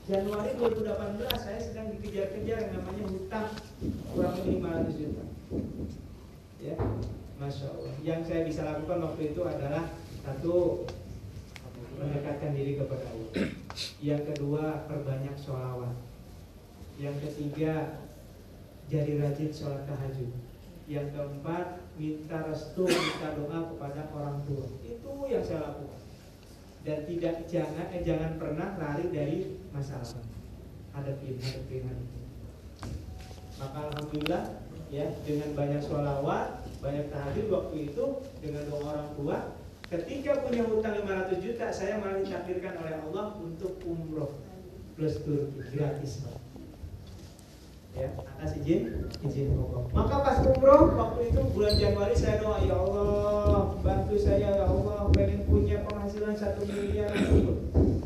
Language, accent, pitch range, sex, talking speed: Indonesian, native, 105-160 Hz, male, 115 wpm